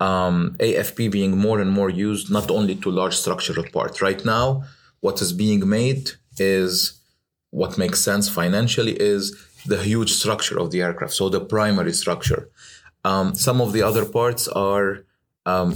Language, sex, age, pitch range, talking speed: English, male, 30-49, 95-120 Hz, 165 wpm